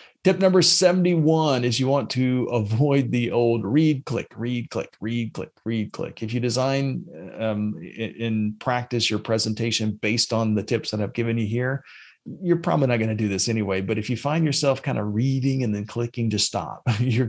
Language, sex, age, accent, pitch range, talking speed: English, male, 40-59, American, 115-140 Hz, 200 wpm